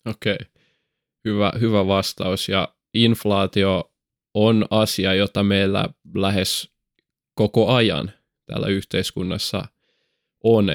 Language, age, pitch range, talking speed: Finnish, 20-39, 95-105 Hz, 95 wpm